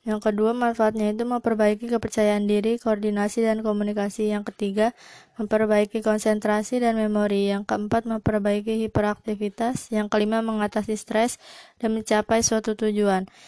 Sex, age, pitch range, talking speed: female, 20-39, 215-230 Hz, 125 wpm